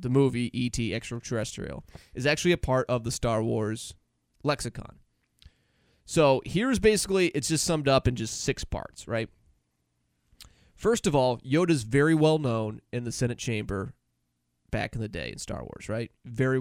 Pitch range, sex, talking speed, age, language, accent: 115-170 Hz, male, 165 wpm, 30-49, English, American